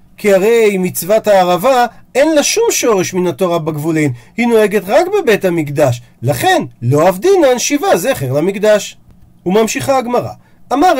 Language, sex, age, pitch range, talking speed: Hebrew, male, 40-59, 165-260 Hz, 135 wpm